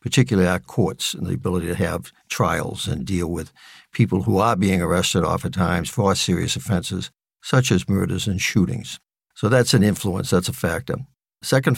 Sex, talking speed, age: male, 175 wpm, 60-79